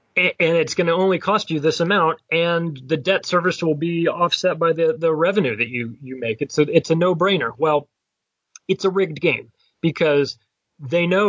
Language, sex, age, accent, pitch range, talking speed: English, male, 30-49, American, 130-165 Hz, 195 wpm